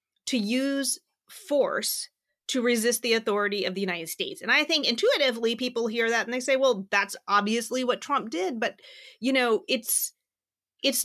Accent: American